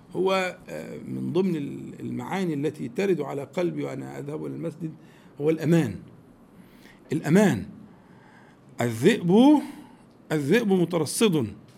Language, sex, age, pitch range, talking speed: Arabic, male, 50-69, 180-250 Hz, 90 wpm